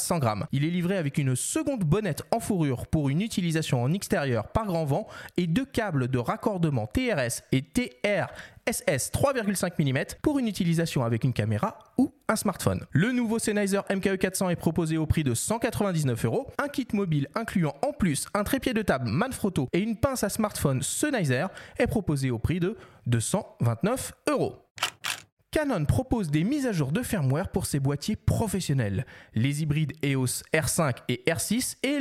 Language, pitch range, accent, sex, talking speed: French, 145-220 Hz, French, male, 170 wpm